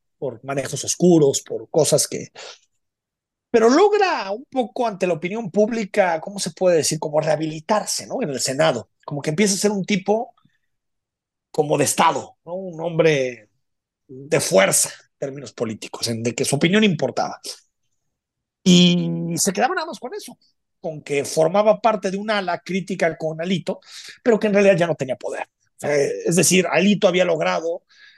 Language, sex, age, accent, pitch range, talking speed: Spanish, male, 40-59, Mexican, 160-220 Hz, 165 wpm